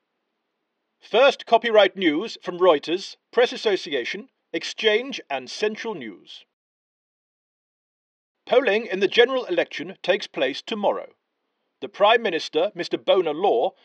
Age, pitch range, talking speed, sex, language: 40-59, 205-310 Hz, 110 wpm, male, English